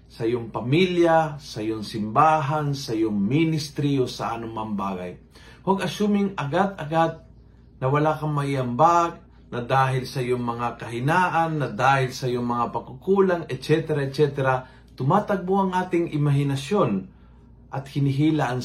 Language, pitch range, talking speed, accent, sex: Filipino, 115-155 Hz, 130 wpm, native, male